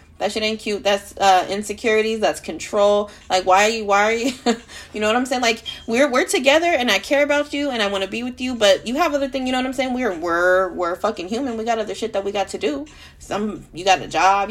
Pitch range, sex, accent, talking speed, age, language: 185-230 Hz, female, American, 275 wpm, 20-39, English